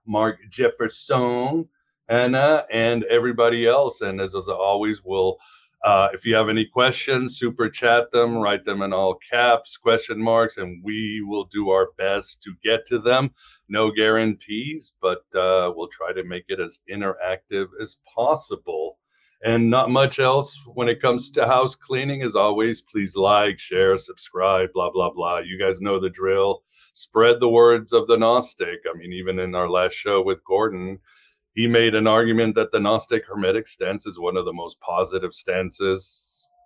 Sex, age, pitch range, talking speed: male, 50-69, 100-125 Hz, 170 wpm